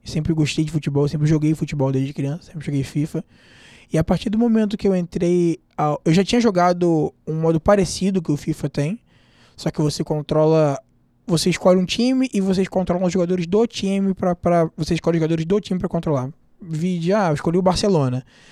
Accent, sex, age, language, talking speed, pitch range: Brazilian, male, 20-39, Portuguese, 205 wpm, 150-195 Hz